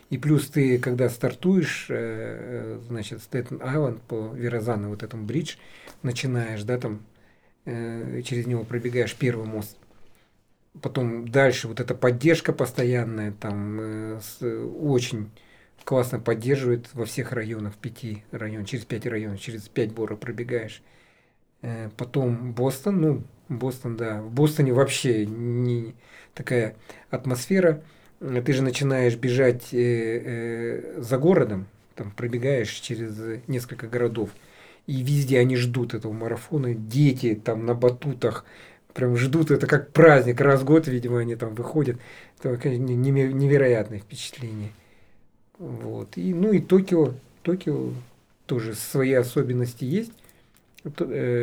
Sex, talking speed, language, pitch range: male, 115 wpm, Russian, 115-135 Hz